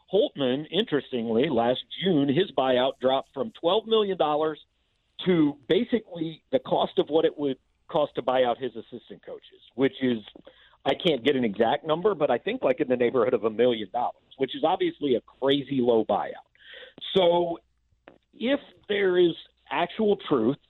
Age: 50-69